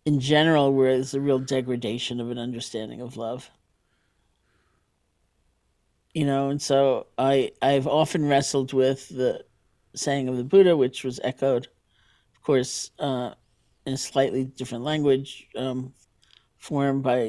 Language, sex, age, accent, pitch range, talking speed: English, male, 50-69, American, 115-140 Hz, 140 wpm